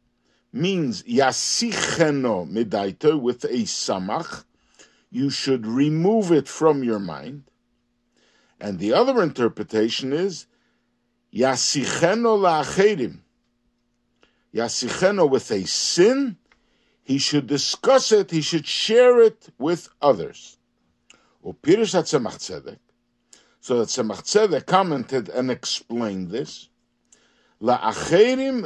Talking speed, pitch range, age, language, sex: 90 wpm, 120-195 Hz, 60-79, English, male